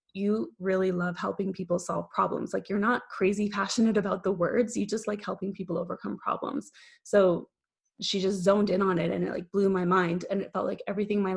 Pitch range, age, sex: 180-205 Hz, 20-39, female